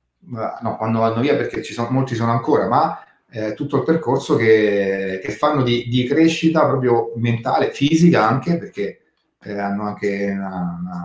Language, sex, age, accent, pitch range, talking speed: Italian, male, 30-49, native, 105-140 Hz, 165 wpm